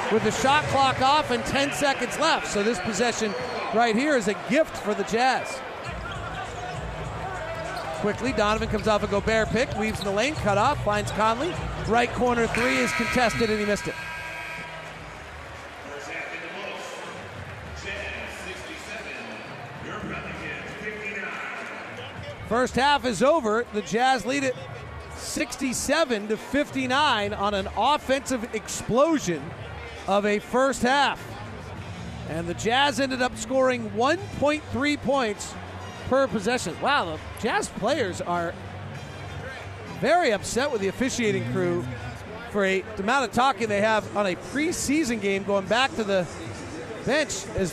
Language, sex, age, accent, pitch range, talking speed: English, male, 40-59, American, 200-260 Hz, 130 wpm